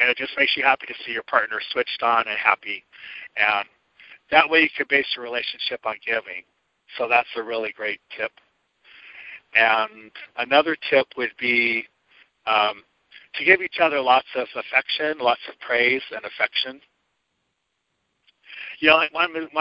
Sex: male